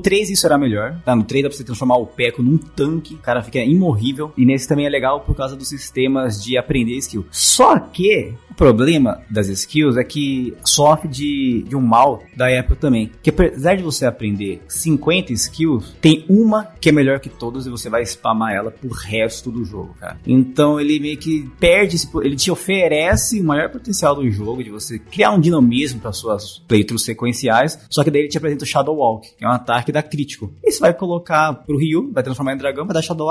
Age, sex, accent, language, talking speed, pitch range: 20-39, male, Brazilian, Portuguese, 220 wpm, 120-160 Hz